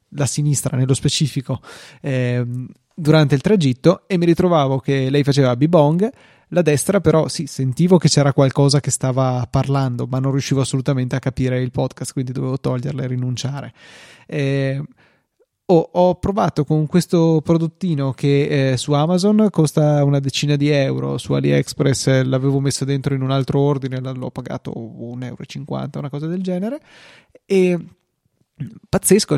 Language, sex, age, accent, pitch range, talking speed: Italian, male, 20-39, native, 135-165 Hz, 150 wpm